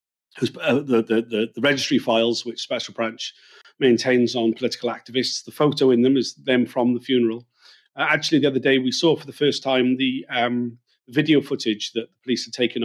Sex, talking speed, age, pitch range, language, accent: male, 190 wpm, 40-59, 115-140 Hz, English, British